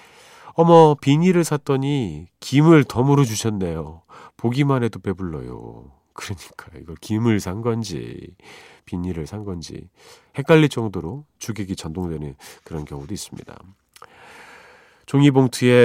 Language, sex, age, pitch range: Korean, male, 40-59, 95-145 Hz